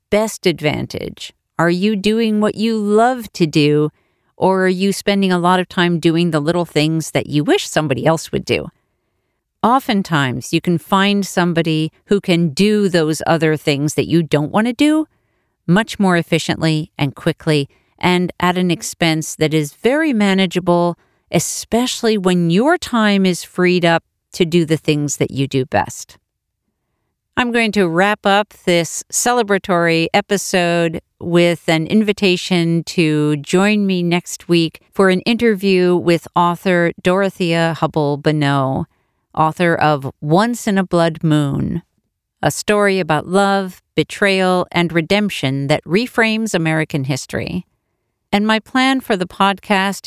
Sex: female